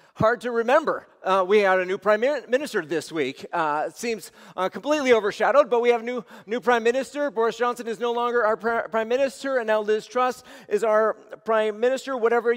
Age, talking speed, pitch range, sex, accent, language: 40-59, 205 wpm, 215-255 Hz, male, American, English